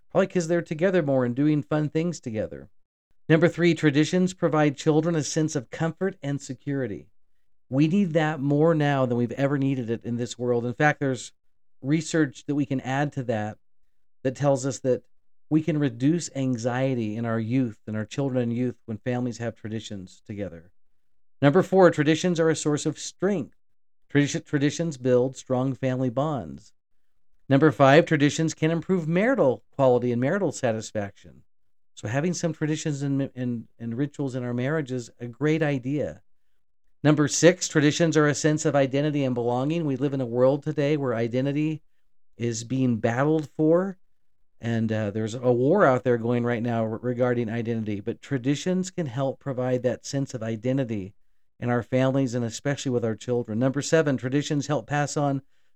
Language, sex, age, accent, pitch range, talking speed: English, male, 50-69, American, 120-155 Hz, 170 wpm